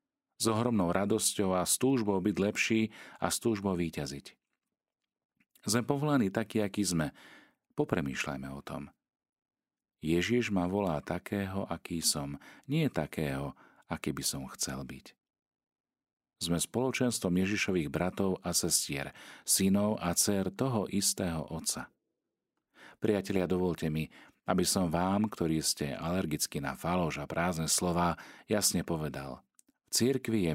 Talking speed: 120 wpm